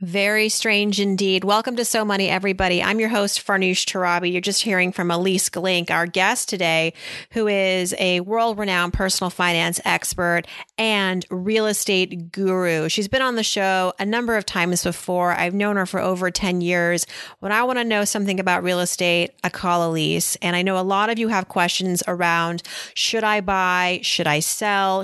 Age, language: 30-49, English